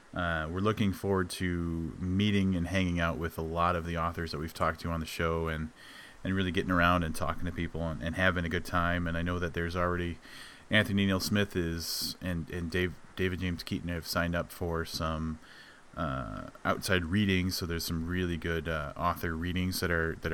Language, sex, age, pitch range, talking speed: English, male, 30-49, 80-90 Hz, 210 wpm